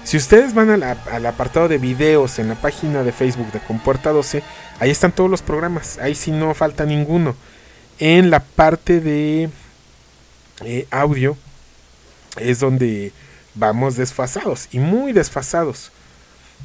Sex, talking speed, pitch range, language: male, 150 wpm, 125-160 Hz, English